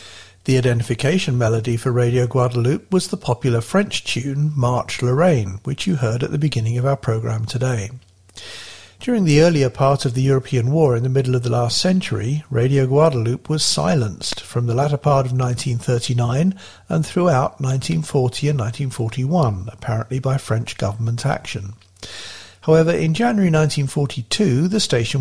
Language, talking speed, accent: English, 150 wpm, British